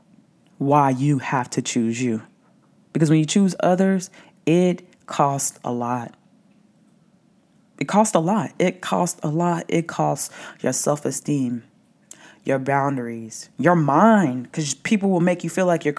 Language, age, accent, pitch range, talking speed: English, 20-39, American, 120-175 Hz, 150 wpm